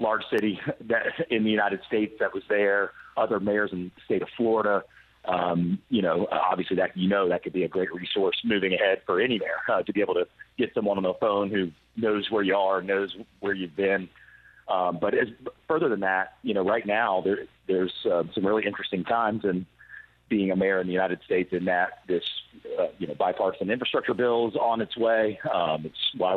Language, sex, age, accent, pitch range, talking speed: English, male, 40-59, American, 95-115 Hz, 220 wpm